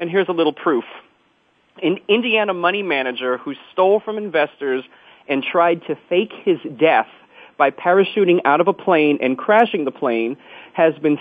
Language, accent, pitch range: English, American, 140-185 Hz